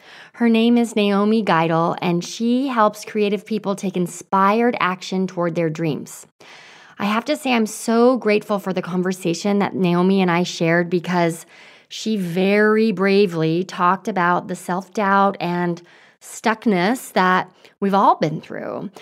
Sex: female